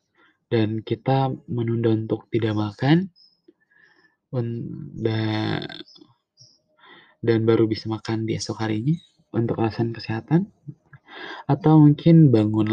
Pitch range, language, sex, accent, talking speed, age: 110-160 Hz, Indonesian, male, native, 95 wpm, 20-39